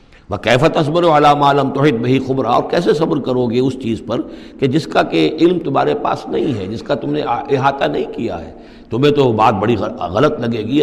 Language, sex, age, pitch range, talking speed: Urdu, male, 60-79, 115-160 Hz, 220 wpm